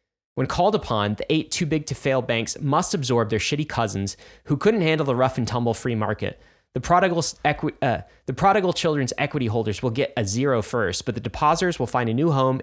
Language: English